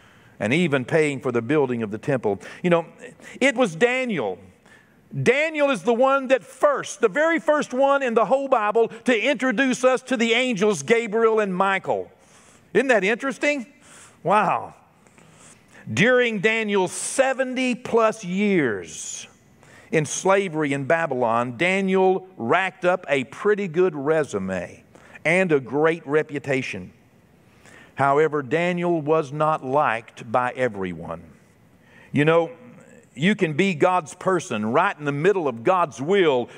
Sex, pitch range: male, 150-235 Hz